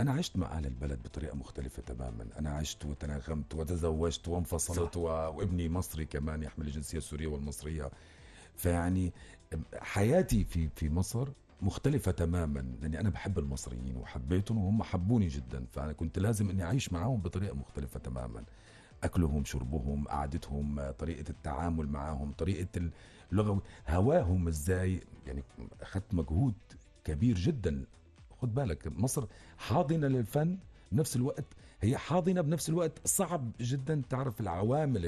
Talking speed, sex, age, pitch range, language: 125 wpm, male, 50-69, 75-110 Hz, Arabic